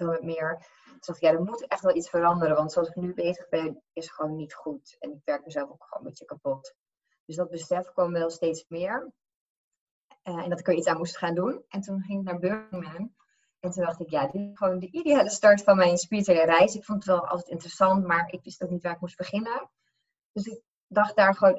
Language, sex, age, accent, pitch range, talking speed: English, female, 20-39, Dutch, 170-195 Hz, 240 wpm